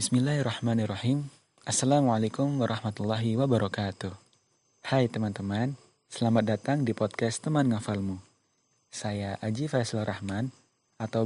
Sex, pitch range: male, 110-130 Hz